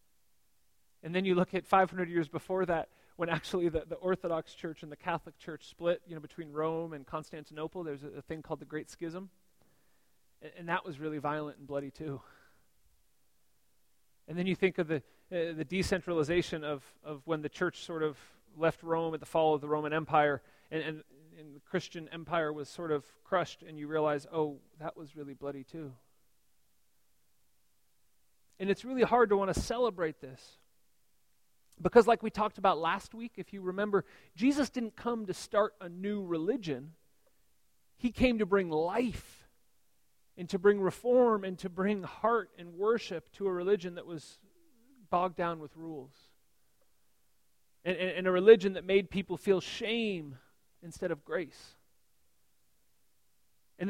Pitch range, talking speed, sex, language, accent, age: 150-195 Hz, 170 wpm, male, English, American, 30-49